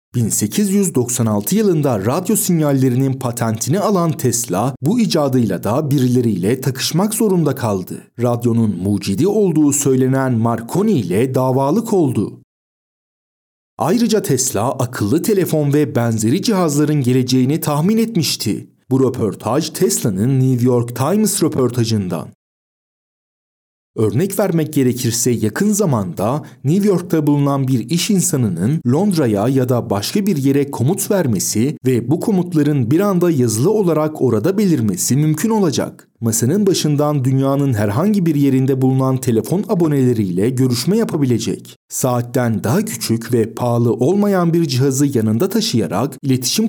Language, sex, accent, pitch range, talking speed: Turkish, male, native, 120-170 Hz, 115 wpm